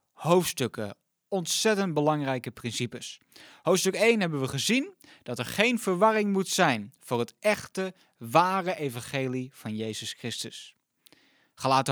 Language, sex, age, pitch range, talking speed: Dutch, male, 20-39, 130-185 Hz, 120 wpm